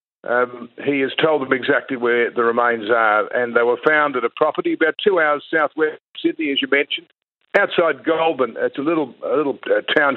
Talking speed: 200 wpm